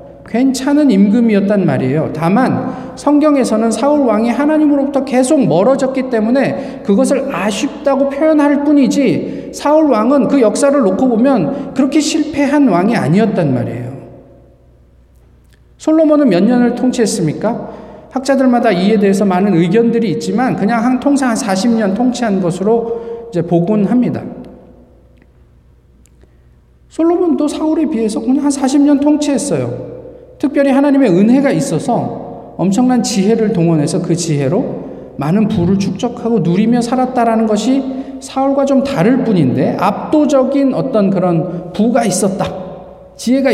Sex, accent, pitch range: male, native, 190-275 Hz